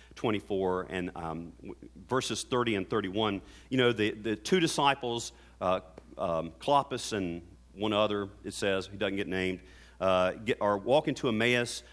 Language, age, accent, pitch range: English, 40-59, American, 95-145 Hz